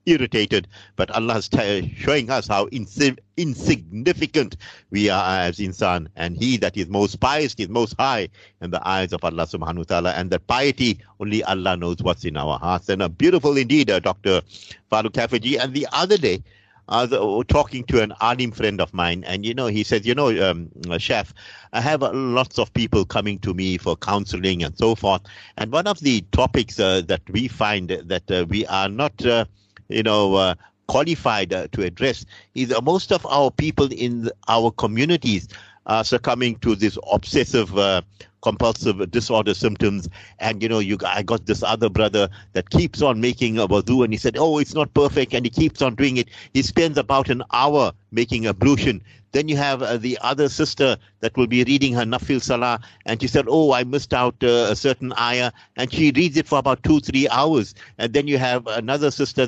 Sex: male